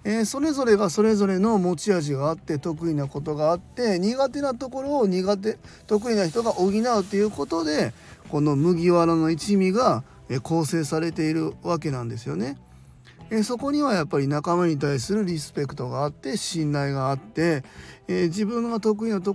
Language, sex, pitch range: Japanese, male, 145-215 Hz